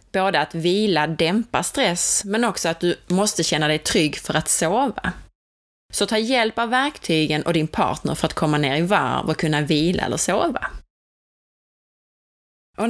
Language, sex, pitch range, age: Swedish, female, 150-205 Hz, 20-39